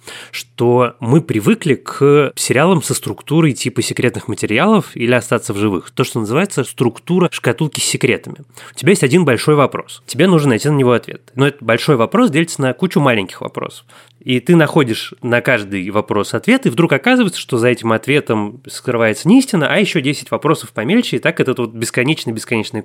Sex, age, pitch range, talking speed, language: male, 20-39, 115-155 Hz, 180 wpm, Russian